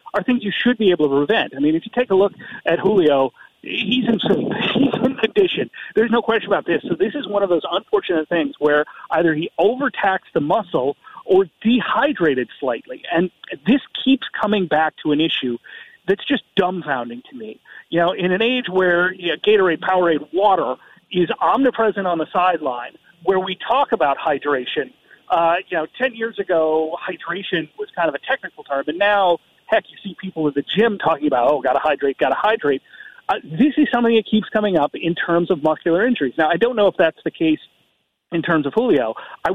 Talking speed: 205 wpm